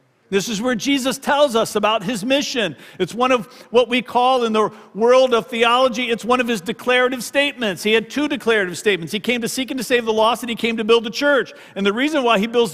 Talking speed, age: 250 wpm, 50-69